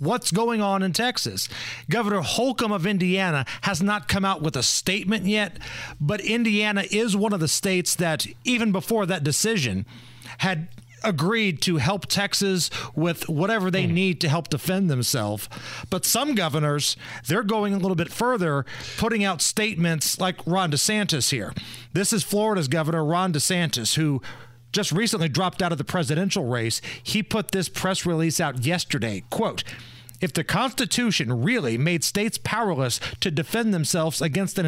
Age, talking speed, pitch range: 40-59, 160 wpm, 145-200 Hz